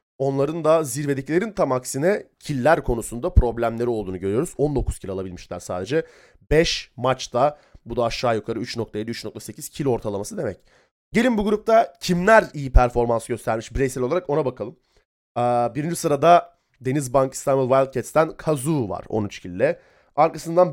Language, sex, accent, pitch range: Turkish, male, native, 120-165 Hz